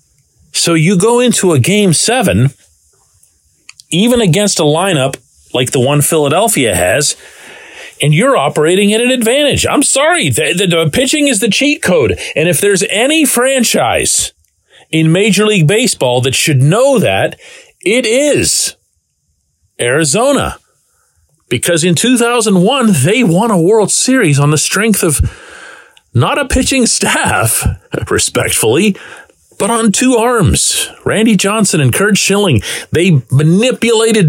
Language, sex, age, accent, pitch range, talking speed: English, male, 40-59, American, 140-220 Hz, 135 wpm